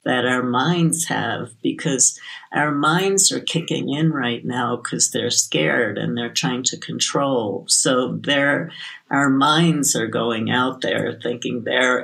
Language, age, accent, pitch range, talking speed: English, 60-79, American, 120-145 Hz, 145 wpm